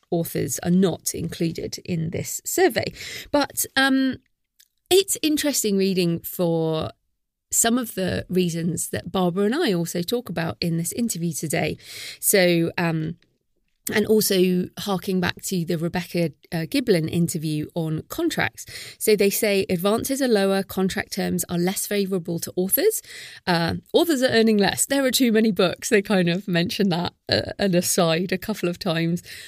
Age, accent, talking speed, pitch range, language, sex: 30-49, British, 155 wpm, 170-210 Hz, English, female